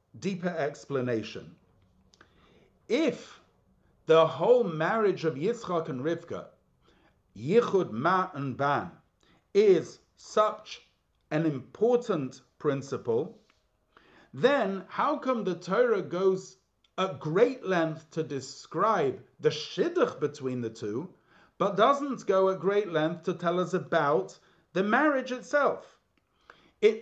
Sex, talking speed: male, 110 wpm